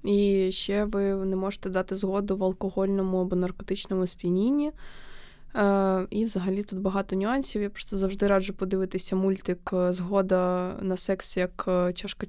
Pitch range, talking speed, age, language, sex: 185-230 Hz, 140 wpm, 20-39, Ukrainian, female